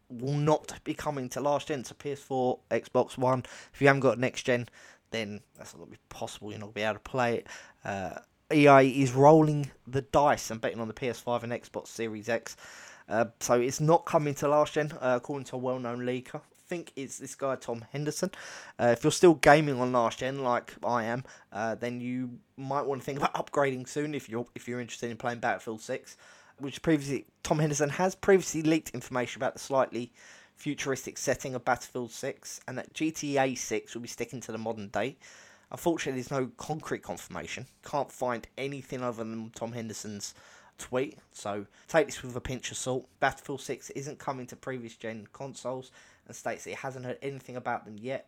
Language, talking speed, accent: English, 205 wpm, British